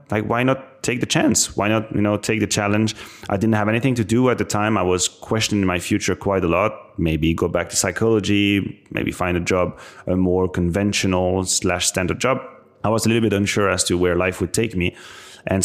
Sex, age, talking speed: male, 30-49, 225 wpm